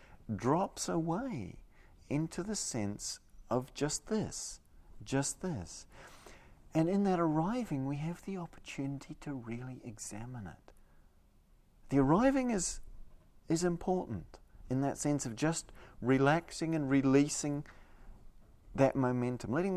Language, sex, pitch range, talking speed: English, male, 110-155 Hz, 115 wpm